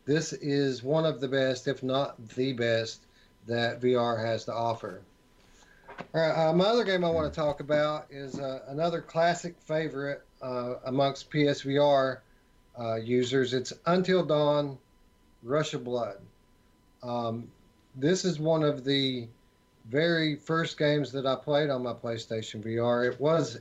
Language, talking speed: English, 155 wpm